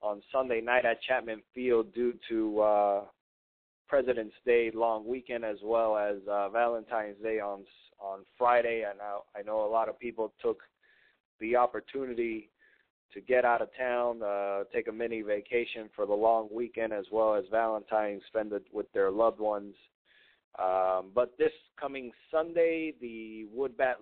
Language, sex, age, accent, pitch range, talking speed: English, male, 20-39, American, 105-125 Hz, 160 wpm